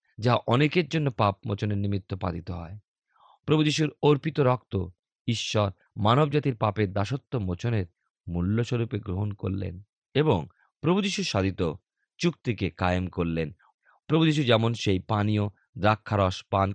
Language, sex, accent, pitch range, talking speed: Bengali, male, native, 95-120 Hz, 115 wpm